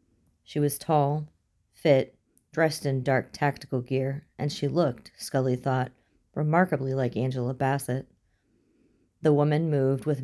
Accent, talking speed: American, 130 wpm